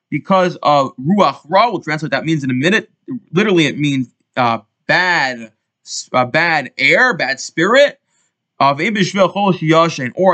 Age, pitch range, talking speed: 20-39, 135-175 Hz, 145 wpm